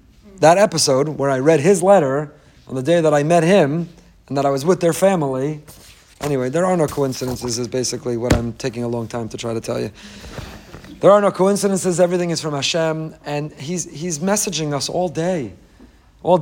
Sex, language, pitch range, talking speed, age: male, English, 140-190 Hz, 200 wpm, 40-59